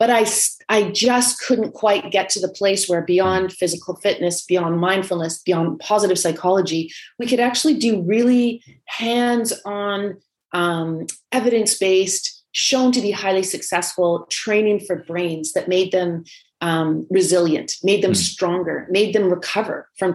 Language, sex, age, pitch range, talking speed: English, female, 30-49, 175-210 Hz, 135 wpm